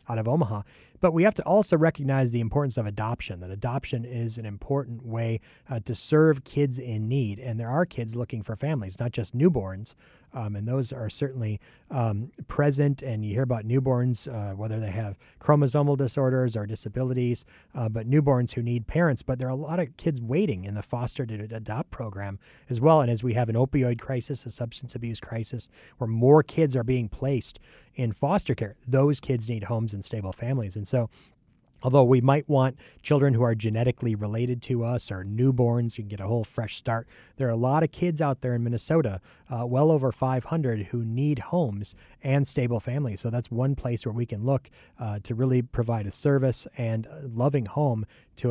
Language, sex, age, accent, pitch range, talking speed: English, male, 30-49, American, 110-135 Hz, 205 wpm